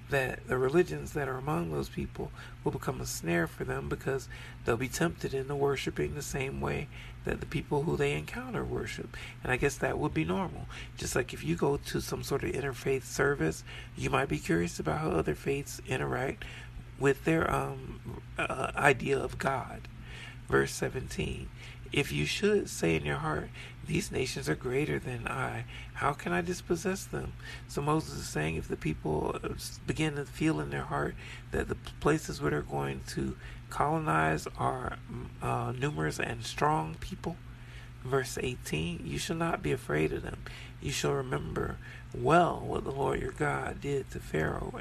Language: English